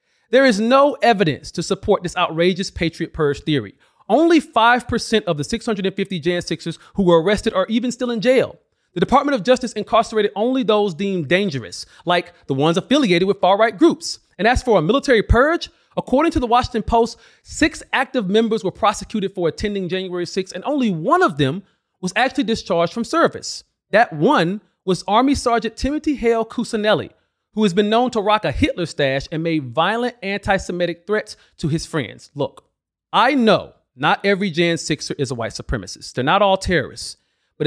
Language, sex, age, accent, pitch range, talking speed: English, male, 30-49, American, 170-230 Hz, 180 wpm